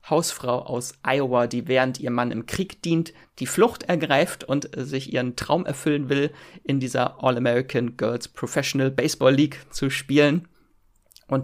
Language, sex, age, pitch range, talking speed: German, male, 30-49, 120-145 Hz, 135 wpm